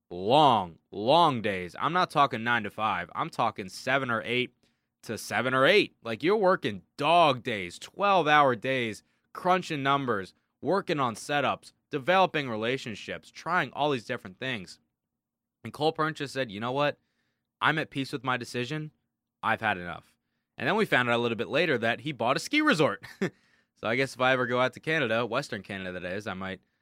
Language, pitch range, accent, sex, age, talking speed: English, 110-140 Hz, American, male, 20-39, 190 wpm